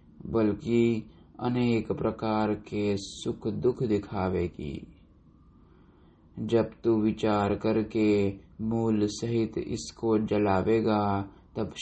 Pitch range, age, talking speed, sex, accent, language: 105-115 Hz, 20-39, 80 wpm, male, native, Hindi